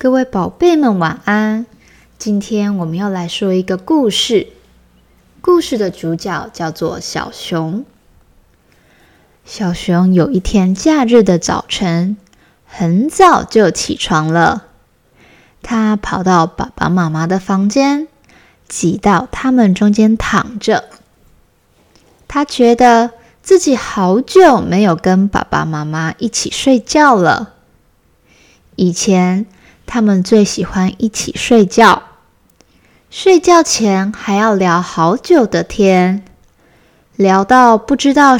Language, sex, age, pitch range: Chinese, female, 20-39, 180-255 Hz